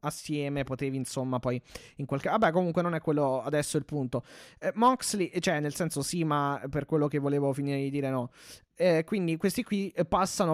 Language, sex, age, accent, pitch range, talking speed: Italian, male, 20-39, native, 140-165 Hz, 195 wpm